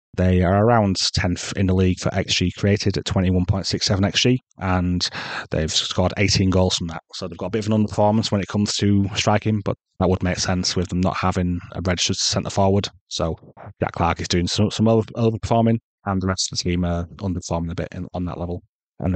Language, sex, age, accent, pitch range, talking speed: English, male, 30-49, British, 90-105 Hz, 210 wpm